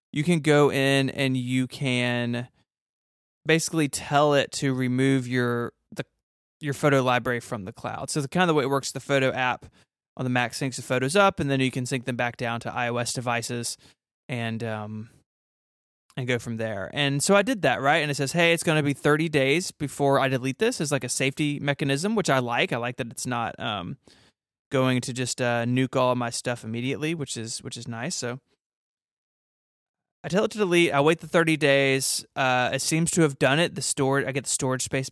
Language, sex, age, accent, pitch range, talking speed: English, male, 20-39, American, 125-150 Hz, 220 wpm